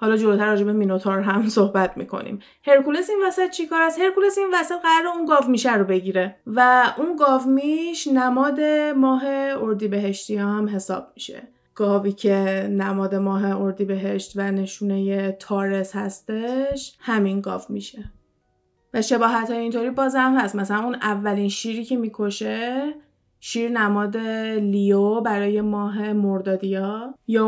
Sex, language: female, Persian